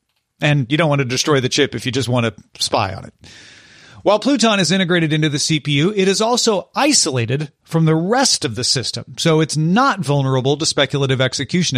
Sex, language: male, English